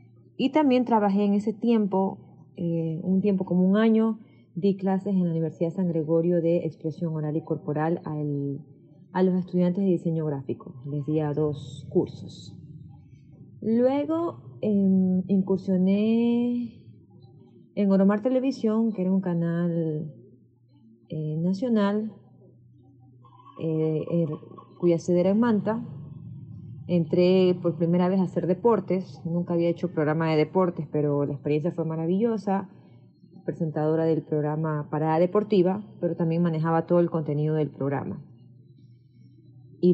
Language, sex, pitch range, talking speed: Spanish, female, 155-190 Hz, 130 wpm